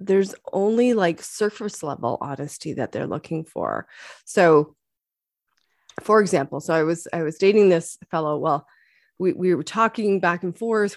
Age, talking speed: 30-49, 160 wpm